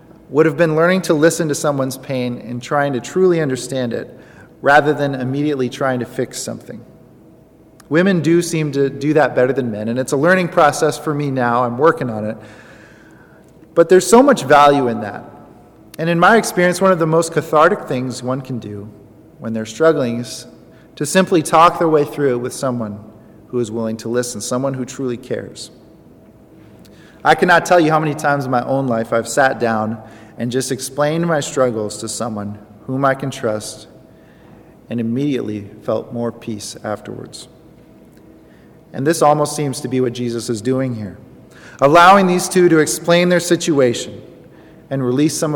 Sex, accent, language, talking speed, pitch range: male, American, English, 180 wpm, 120-160 Hz